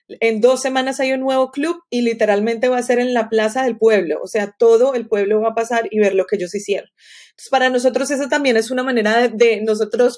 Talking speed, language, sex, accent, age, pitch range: 250 wpm, English, female, Colombian, 30-49, 215-255 Hz